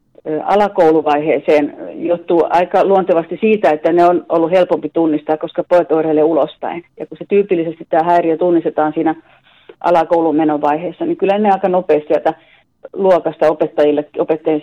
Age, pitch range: 40-59, 155-185 Hz